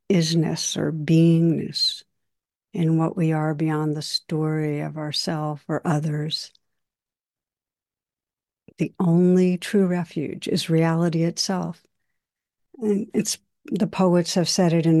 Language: English